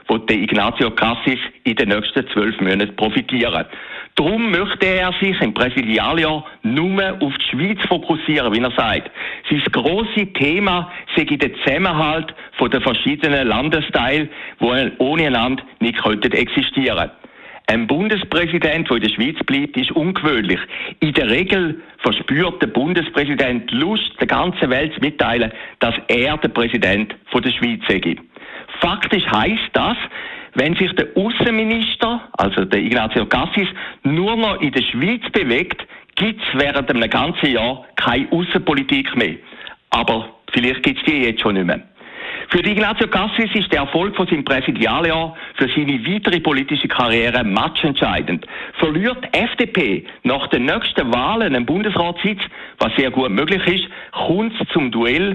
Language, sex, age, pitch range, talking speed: German, male, 60-79, 140-205 Hz, 145 wpm